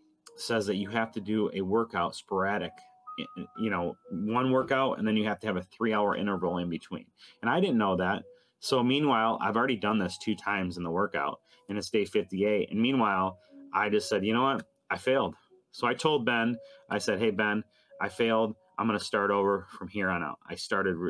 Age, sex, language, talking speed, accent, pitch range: 30-49, male, English, 215 wpm, American, 100-140 Hz